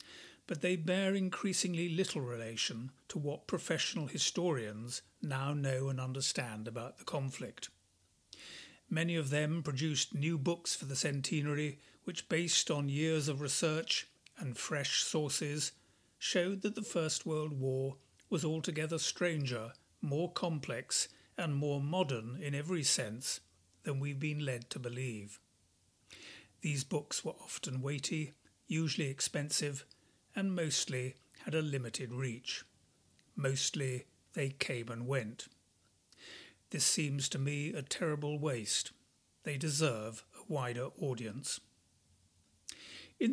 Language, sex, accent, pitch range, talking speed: English, male, British, 130-160 Hz, 125 wpm